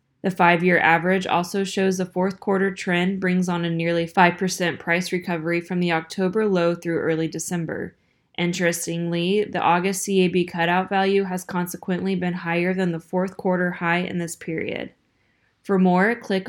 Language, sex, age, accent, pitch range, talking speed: English, female, 20-39, American, 175-195 Hz, 160 wpm